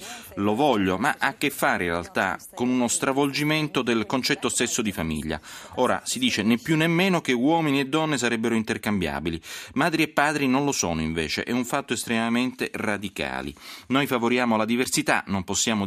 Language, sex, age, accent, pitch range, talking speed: Italian, male, 30-49, native, 90-120 Hz, 180 wpm